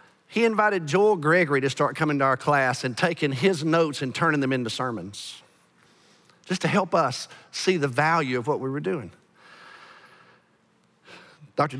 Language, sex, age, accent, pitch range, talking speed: English, male, 50-69, American, 130-165 Hz, 165 wpm